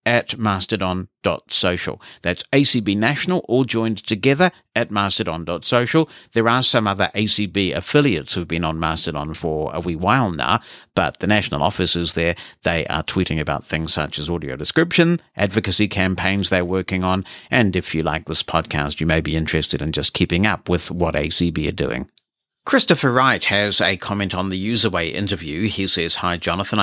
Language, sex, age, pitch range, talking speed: English, male, 60-79, 90-115 Hz, 170 wpm